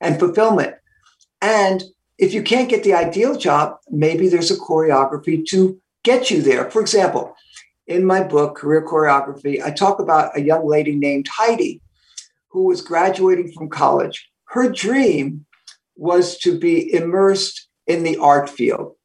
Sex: male